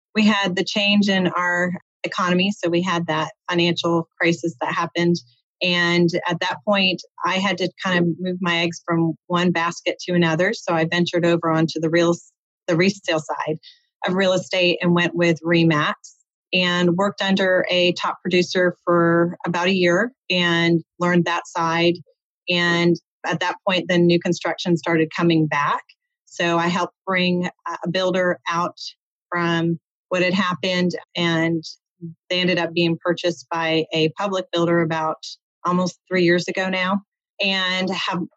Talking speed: 160 wpm